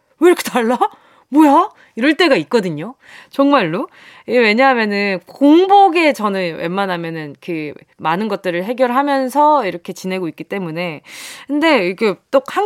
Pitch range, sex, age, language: 195-320 Hz, female, 20-39, Korean